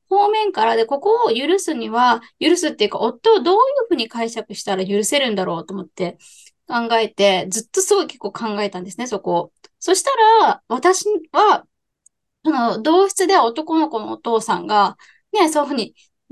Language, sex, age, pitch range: Japanese, female, 20-39, 210-345 Hz